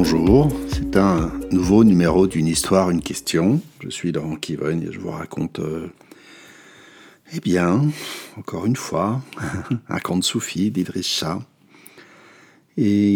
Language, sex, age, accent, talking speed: French, male, 60-79, French, 130 wpm